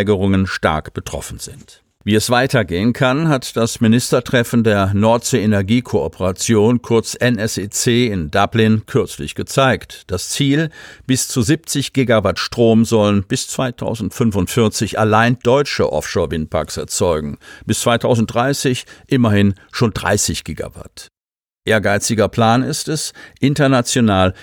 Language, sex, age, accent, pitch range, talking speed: German, male, 50-69, German, 100-125 Hz, 105 wpm